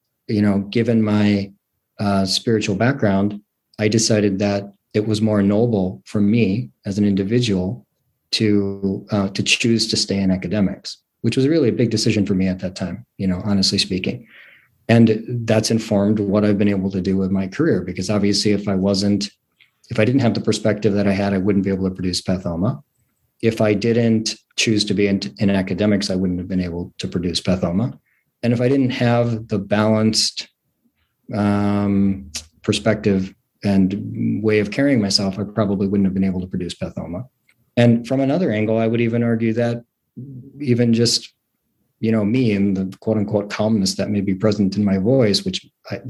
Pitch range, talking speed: 100-115 Hz, 185 wpm